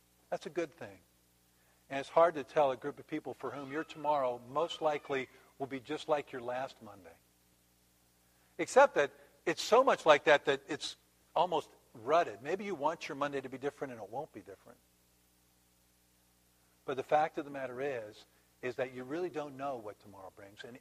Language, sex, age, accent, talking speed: English, male, 50-69, American, 195 wpm